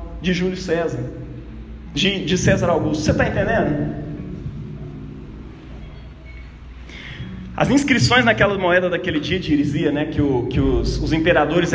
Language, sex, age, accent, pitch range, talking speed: Portuguese, male, 20-39, Brazilian, 125-205 Hz, 130 wpm